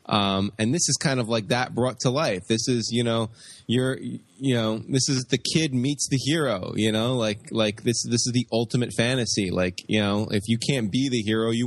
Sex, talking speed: male, 230 wpm